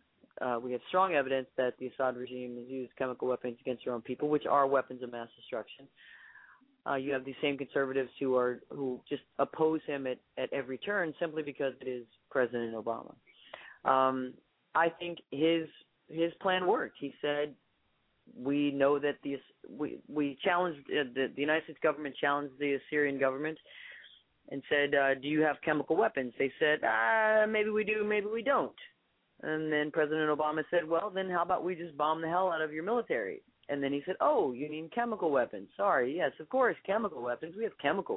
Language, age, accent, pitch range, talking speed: English, 30-49, American, 135-165 Hz, 195 wpm